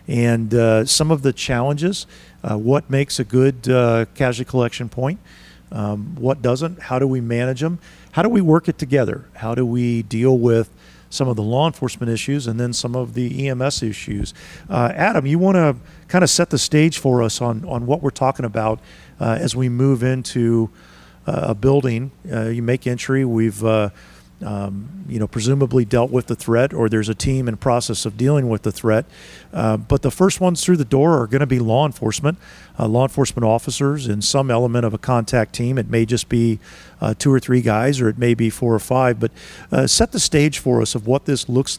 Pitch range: 110-135 Hz